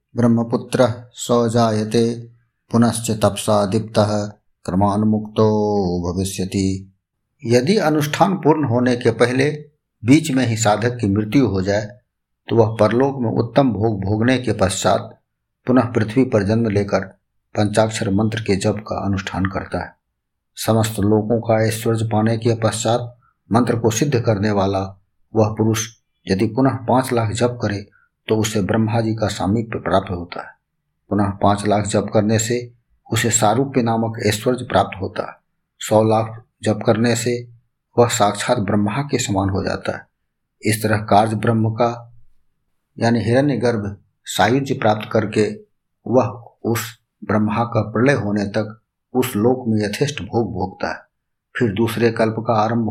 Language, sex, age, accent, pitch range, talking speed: Hindi, male, 50-69, native, 105-120 Hz, 145 wpm